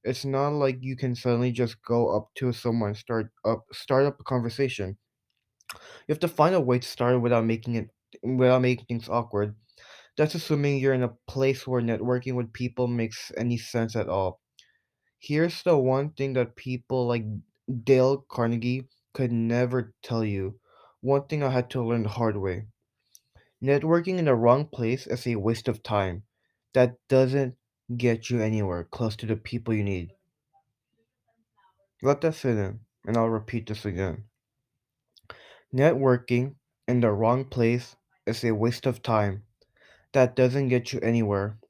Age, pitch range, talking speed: 20-39, 115-135 Hz, 165 wpm